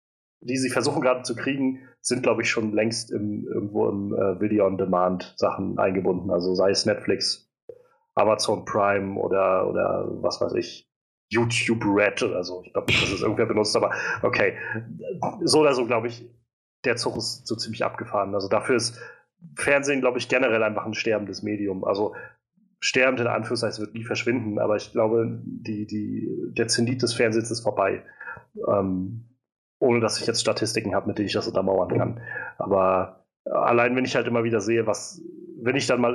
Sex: male